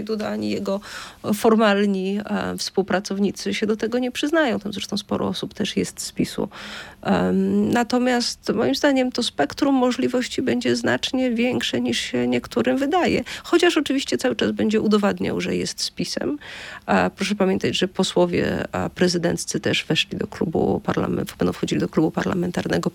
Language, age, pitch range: Polish, 40-59, 190-250 Hz